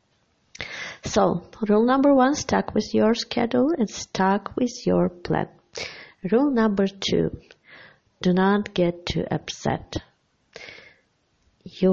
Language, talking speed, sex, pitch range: English, 110 wpm, female, 165-215 Hz